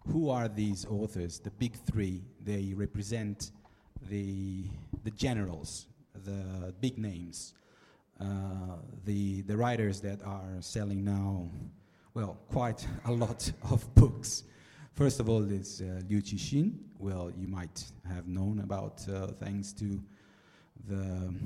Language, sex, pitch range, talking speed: Italian, male, 90-110 Hz, 130 wpm